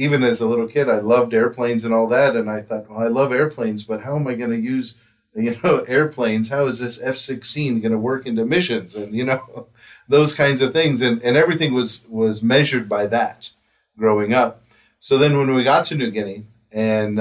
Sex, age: male, 40-59